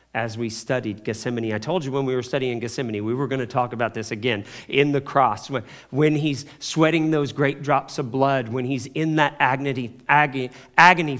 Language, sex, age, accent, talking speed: English, male, 40-59, American, 200 wpm